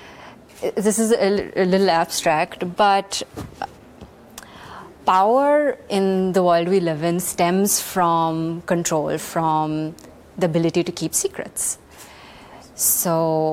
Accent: Indian